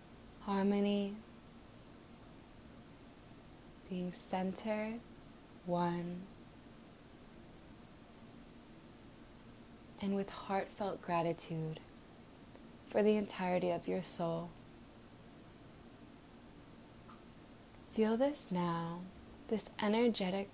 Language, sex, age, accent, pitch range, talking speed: English, female, 20-39, American, 175-215 Hz, 55 wpm